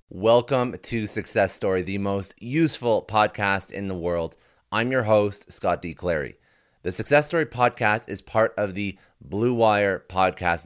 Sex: male